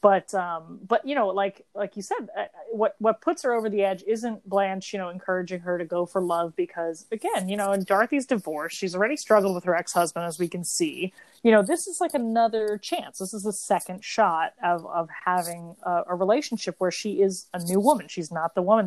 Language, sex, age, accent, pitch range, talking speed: English, female, 30-49, American, 175-215 Hz, 225 wpm